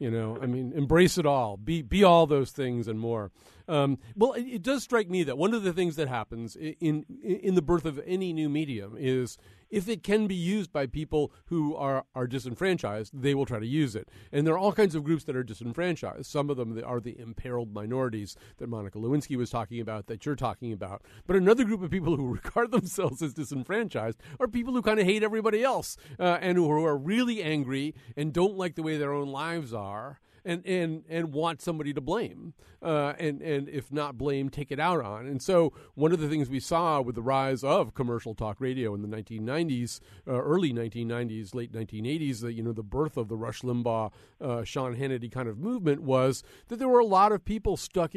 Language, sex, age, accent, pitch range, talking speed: English, male, 40-59, American, 120-170 Hz, 225 wpm